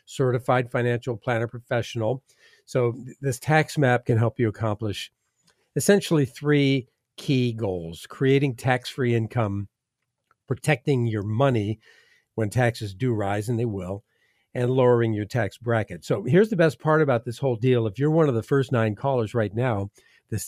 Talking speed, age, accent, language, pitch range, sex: 160 wpm, 50-69, American, English, 115-135 Hz, male